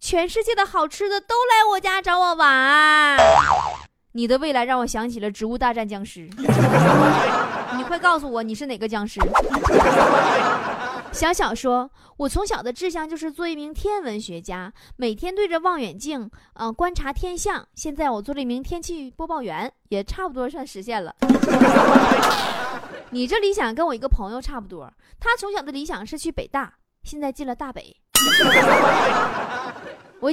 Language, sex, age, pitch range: Chinese, female, 20-39, 225-350 Hz